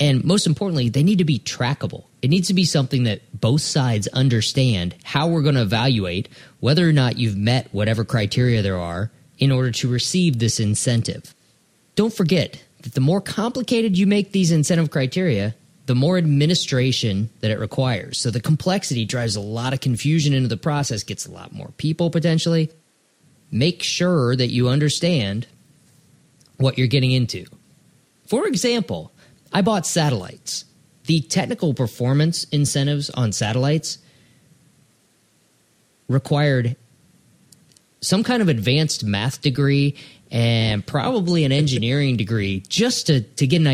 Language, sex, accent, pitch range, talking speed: English, male, American, 120-165 Hz, 150 wpm